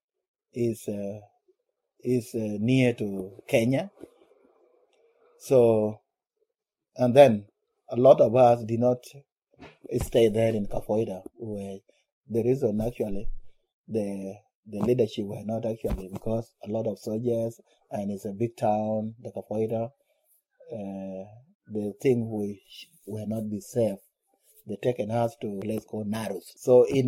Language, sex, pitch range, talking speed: English, male, 110-140 Hz, 130 wpm